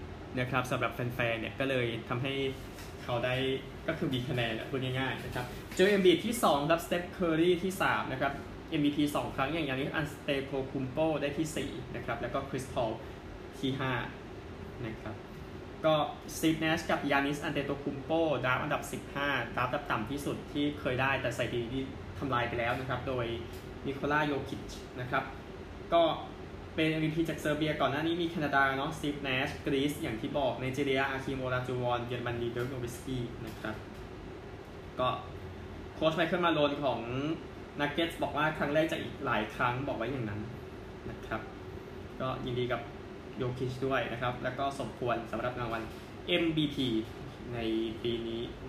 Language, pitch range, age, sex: Thai, 120-145 Hz, 20-39, male